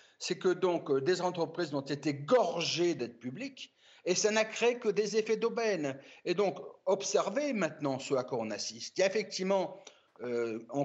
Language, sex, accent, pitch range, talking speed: French, male, French, 155-225 Hz, 175 wpm